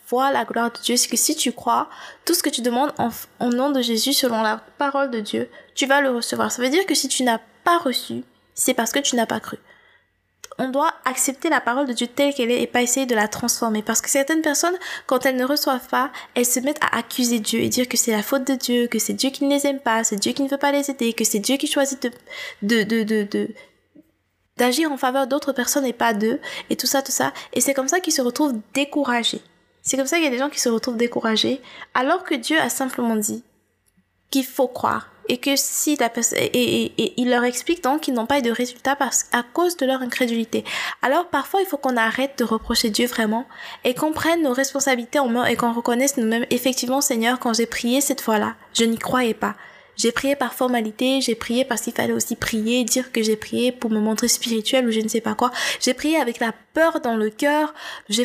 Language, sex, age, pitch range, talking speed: French, female, 20-39, 235-280 Hz, 250 wpm